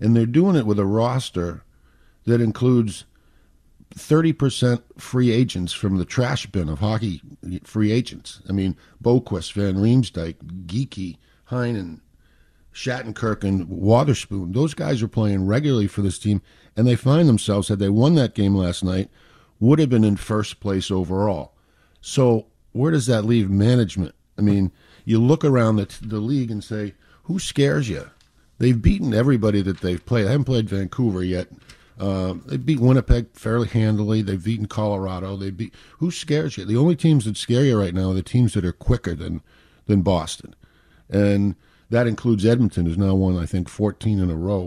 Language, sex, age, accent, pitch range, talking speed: English, male, 50-69, American, 95-125 Hz, 175 wpm